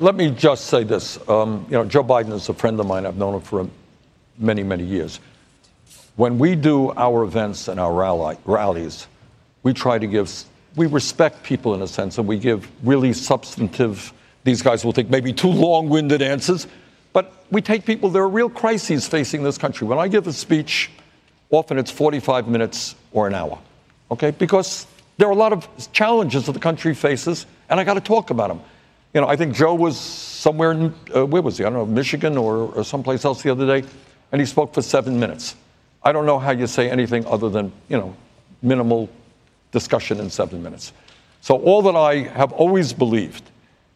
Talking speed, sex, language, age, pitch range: 200 wpm, male, English, 60-79, 115-150 Hz